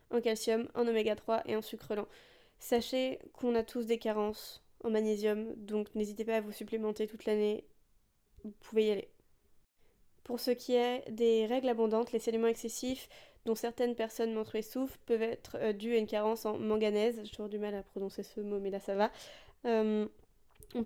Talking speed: 190 wpm